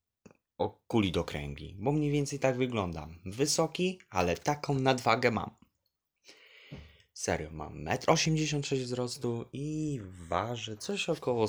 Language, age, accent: Polish, 20-39, native